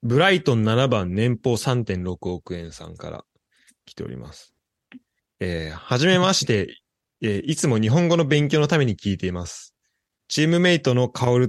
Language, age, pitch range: Japanese, 20-39, 105-140 Hz